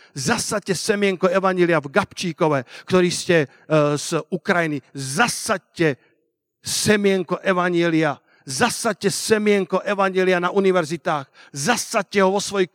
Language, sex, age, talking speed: Slovak, male, 50-69, 100 wpm